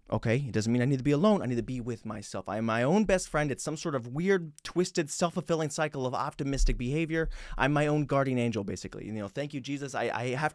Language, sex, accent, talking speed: English, male, American, 270 wpm